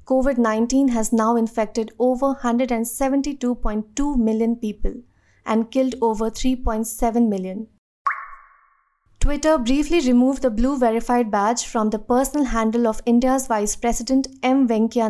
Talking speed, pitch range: 120 wpm, 220-255 Hz